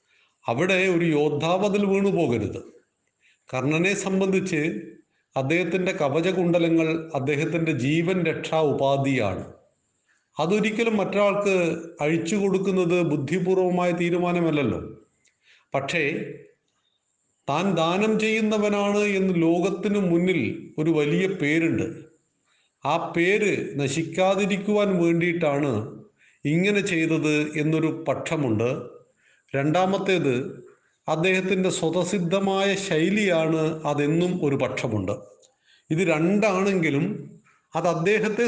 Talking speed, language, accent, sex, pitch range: 75 wpm, Malayalam, native, male, 155-195 Hz